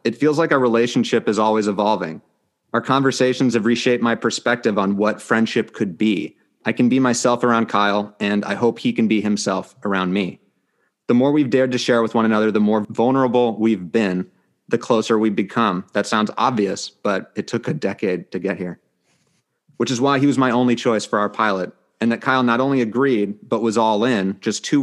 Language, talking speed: English, 210 wpm